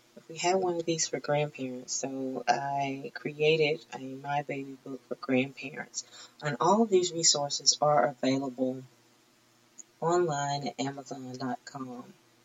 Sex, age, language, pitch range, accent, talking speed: female, 30-49, English, 125-150 Hz, American, 125 wpm